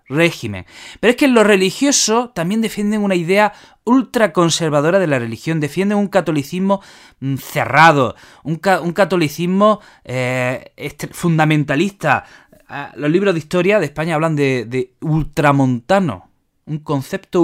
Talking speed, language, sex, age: 125 wpm, Spanish, male, 20-39